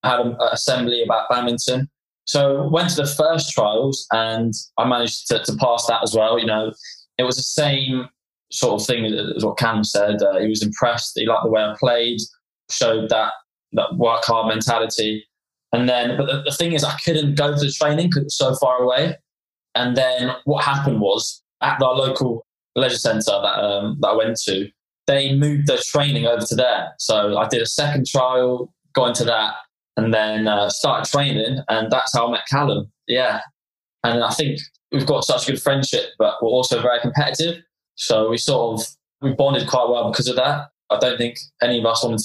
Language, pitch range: English, 115-140 Hz